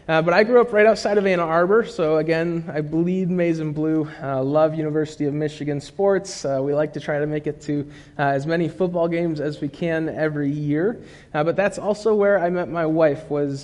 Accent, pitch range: American, 145-165 Hz